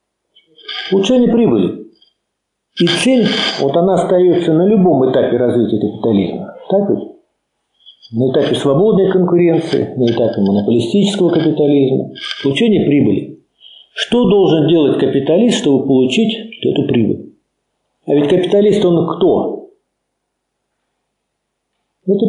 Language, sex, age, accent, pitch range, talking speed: Russian, male, 50-69, native, 135-210 Hz, 100 wpm